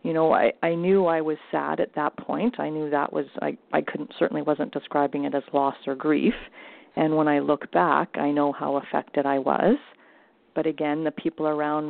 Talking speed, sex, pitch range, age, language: 210 wpm, female, 150-180 Hz, 40-59, English